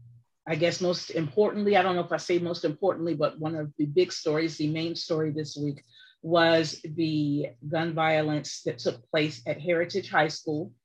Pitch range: 145-175 Hz